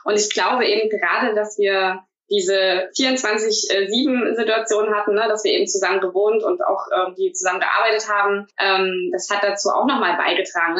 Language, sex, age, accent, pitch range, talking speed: German, female, 20-39, German, 190-240 Hz, 180 wpm